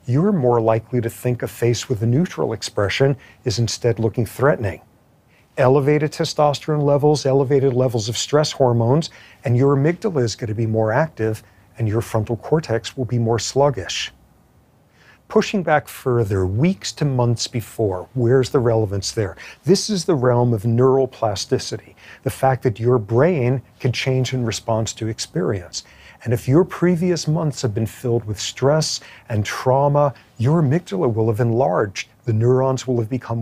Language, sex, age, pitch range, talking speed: English, male, 50-69, 110-135 Hz, 165 wpm